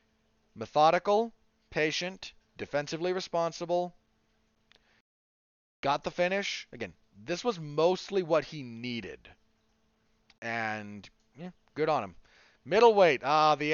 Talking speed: 95 wpm